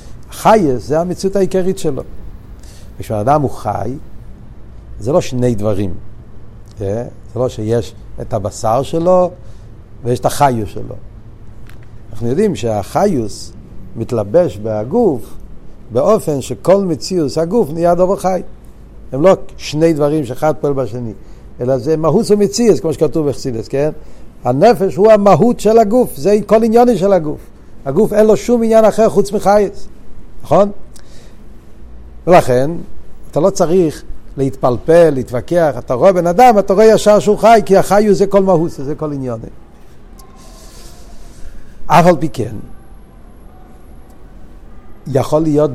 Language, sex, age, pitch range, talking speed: Hebrew, male, 60-79, 115-190 Hz, 125 wpm